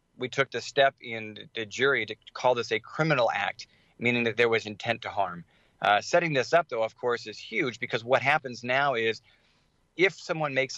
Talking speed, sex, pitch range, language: 205 wpm, male, 110-130 Hz, English